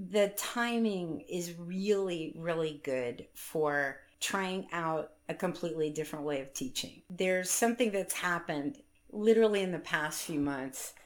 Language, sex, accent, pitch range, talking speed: English, female, American, 145-175 Hz, 135 wpm